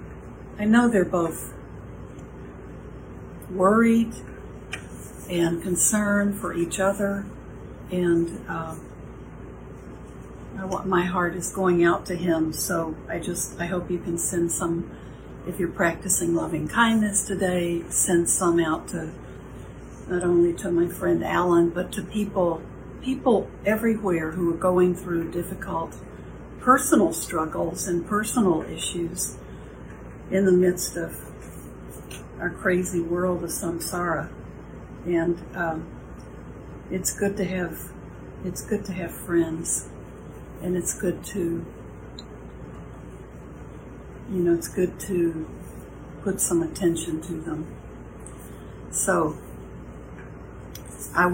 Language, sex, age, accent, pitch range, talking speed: English, female, 60-79, American, 170-190 Hz, 110 wpm